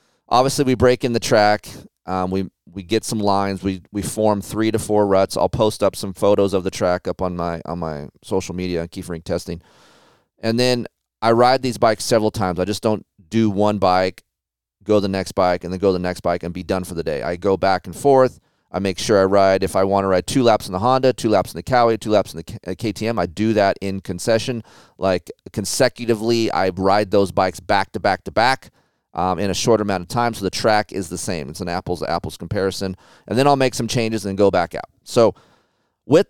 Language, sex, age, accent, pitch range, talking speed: English, male, 30-49, American, 95-115 Hz, 235 wpm